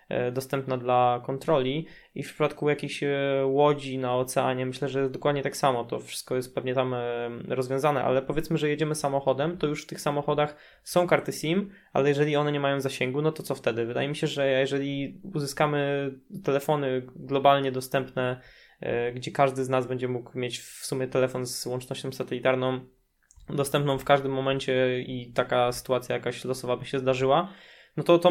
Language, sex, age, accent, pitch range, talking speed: Polish, male, 20-39, native, 130-145 Hz, 170 wpm